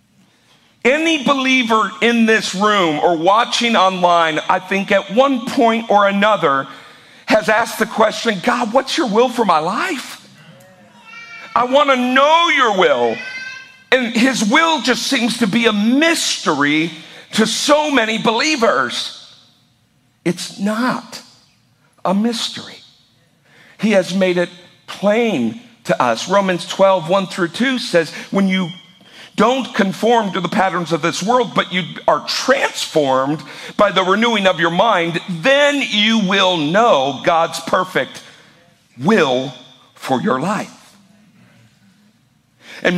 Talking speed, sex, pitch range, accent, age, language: 130 wpm, male, 170-235 Hz, American, 50-69, English